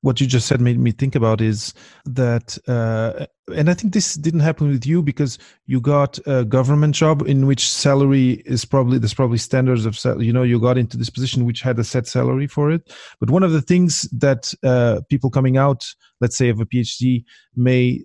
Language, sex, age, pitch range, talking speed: English, male, 30-49, 120-145 Hz, 215 wpm